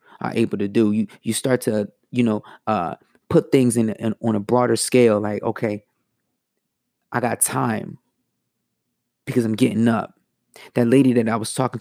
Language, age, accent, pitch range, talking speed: English, 20-39, American, 110-135 Hz, 175 wpm